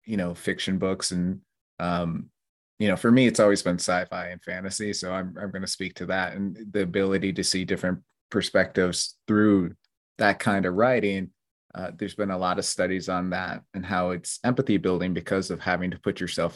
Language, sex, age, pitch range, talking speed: English, male, 30-49, 85-100 Hz, 205 wpm